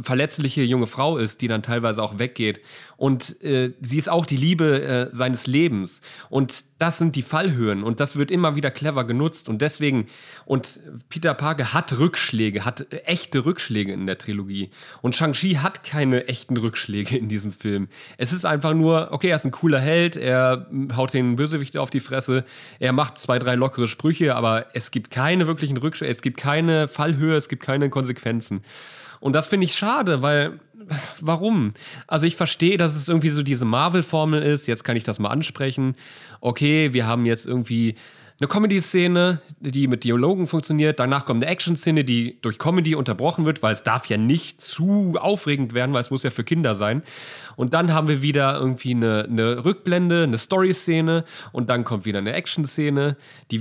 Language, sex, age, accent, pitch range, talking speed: German, male, 30-49, German, 120-160 Hz, 185 wpm